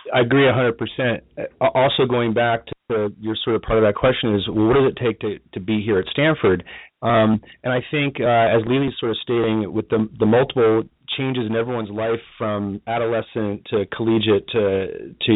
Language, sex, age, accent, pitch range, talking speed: English, male, 30-49, American, 105-125 Hz, 205 wpm